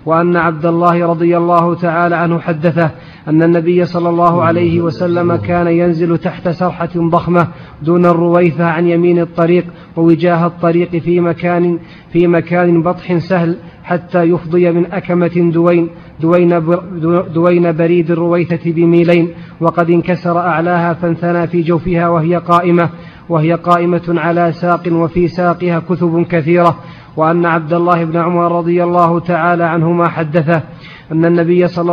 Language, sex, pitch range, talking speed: Arabic, male, 170-175 Hz, 130 wpm